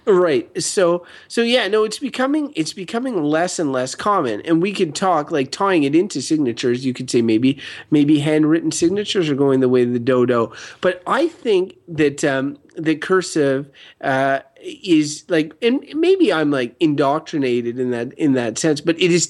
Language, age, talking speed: English, 30-49, 185 wpm